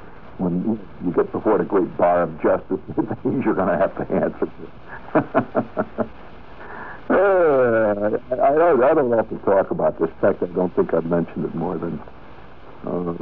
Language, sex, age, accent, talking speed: English, male, 60-79, American, 145 wpm